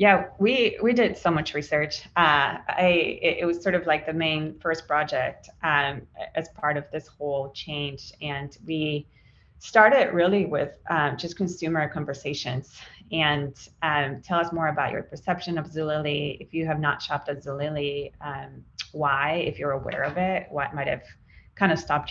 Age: 30-49